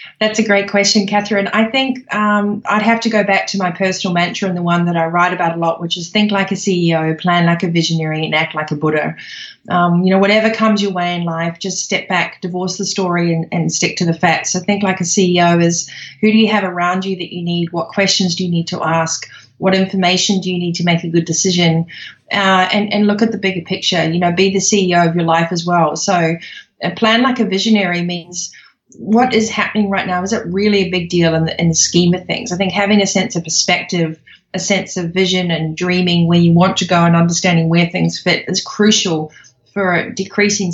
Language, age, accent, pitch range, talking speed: English, 30-49, Australian, 170-200 Hz, 240 wpm